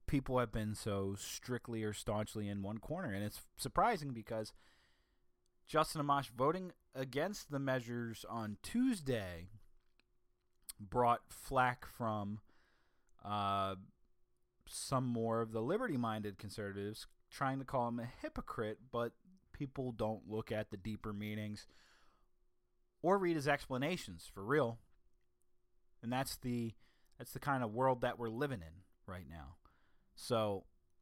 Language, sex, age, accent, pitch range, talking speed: English, male, 30-49, American, 100-140 Hz, 130 wpm